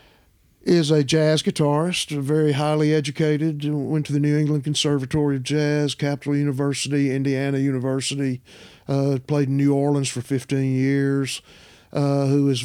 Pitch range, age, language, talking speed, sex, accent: 125-150 Hz, 50-69, English, 140 wpm, male, American